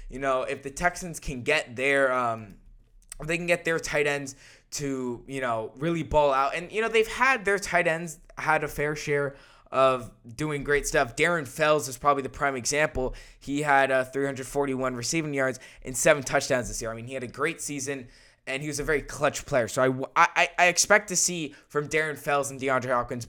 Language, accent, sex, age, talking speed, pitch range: English, American, male, 10-29, 220 wpm, 125-155 Hz